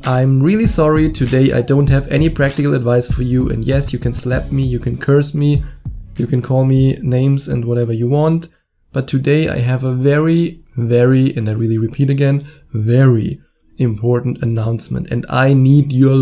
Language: English